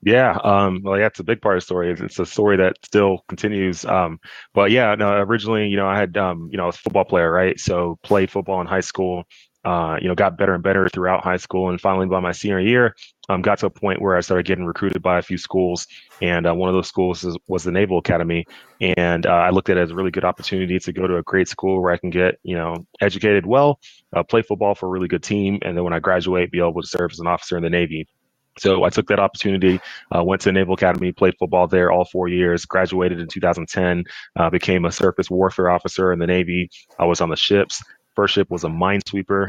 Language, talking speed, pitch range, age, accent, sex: English, 255 wpm, 90-100 Hz, 20-39, American, male